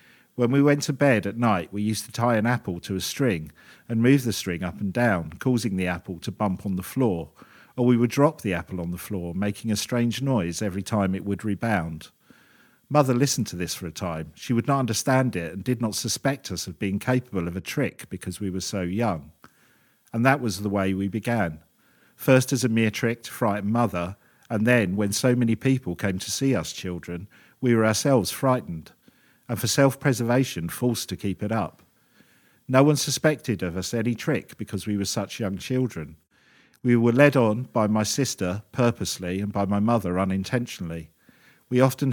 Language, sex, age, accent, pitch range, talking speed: English, male, 50-69, British, 95-125 Hz, 205 wpm